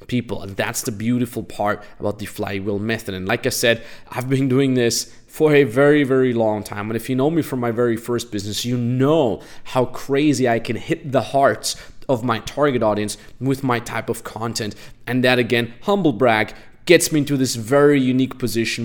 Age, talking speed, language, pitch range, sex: 20-39, 205 wpm, English, 115-145 Hz, male